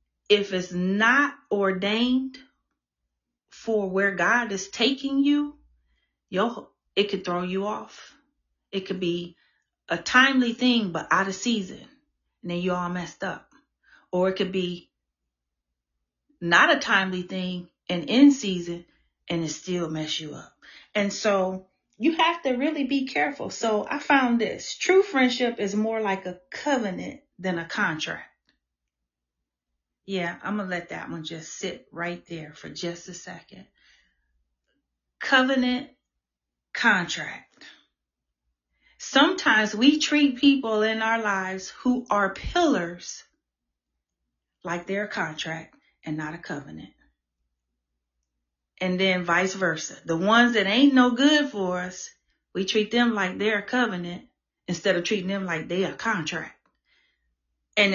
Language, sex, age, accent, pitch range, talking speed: English, female, 40-59, American, 160-230 Hz, 140 wpm